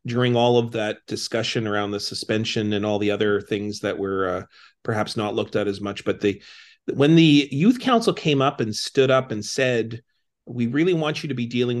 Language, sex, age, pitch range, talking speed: English, male, 40-59, 115-145 Hz, 215 wpm